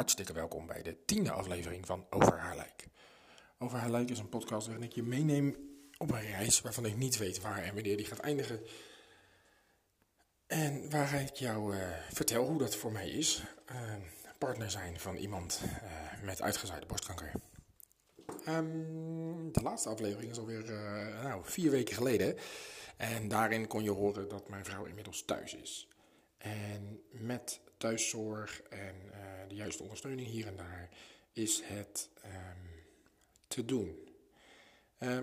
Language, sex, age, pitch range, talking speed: Dutch, male, 40-59, 100-125 Hz, 155 wpm